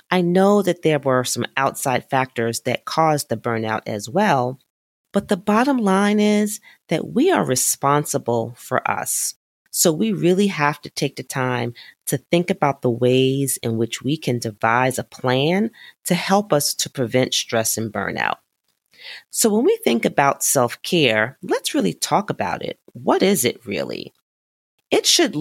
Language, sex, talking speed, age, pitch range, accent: English, female, 165 wpm, 40-59, 125-180 Hz, American